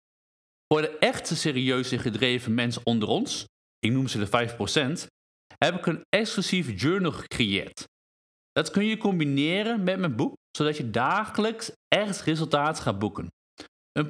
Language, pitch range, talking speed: Dutch, 130-190 Hz, 145 wpm